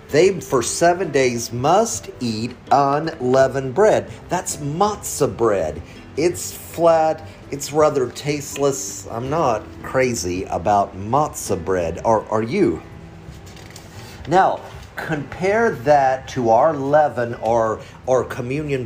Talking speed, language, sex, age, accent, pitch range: 110 wpm, English, male, 50-69, American, 100-135 Hz